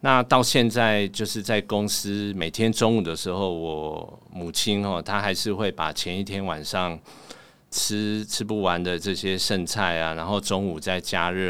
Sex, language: male, Chinese